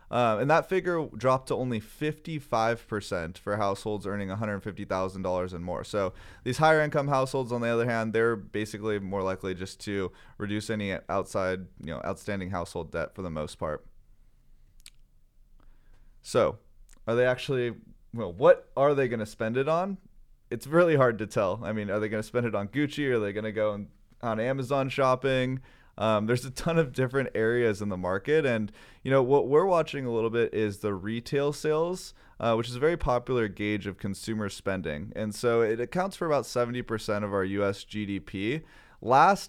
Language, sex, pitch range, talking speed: English, male, 105-135 Hz, 185 wpm